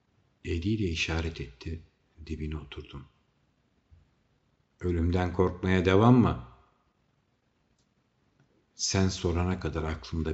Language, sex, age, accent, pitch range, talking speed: Turkish, male, 60-79, native, 75-95 Hz, 75 wpm